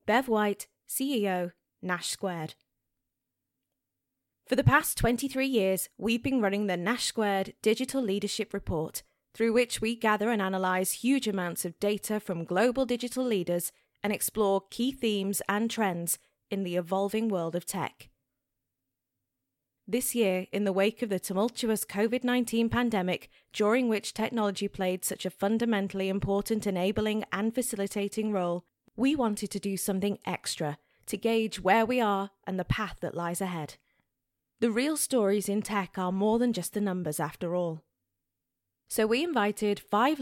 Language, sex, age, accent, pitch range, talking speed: English, female, 20-39, British, 185-225 Hz, 150 wpm